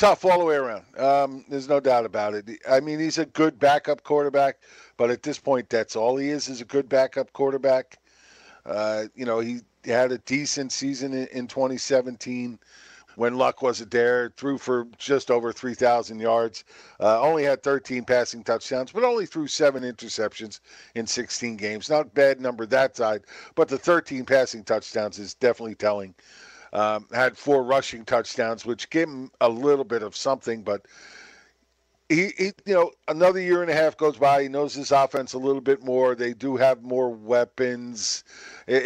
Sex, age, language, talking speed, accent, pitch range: male, 50-69, English, 185 wpm, American, 120-140 Hz